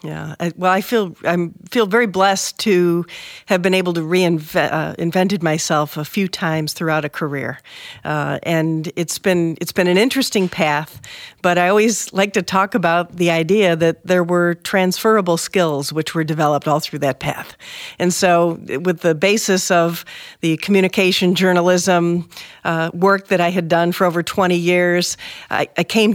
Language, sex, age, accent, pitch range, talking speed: English, female, 50-69, American, 165-190 Hz, 175 wpm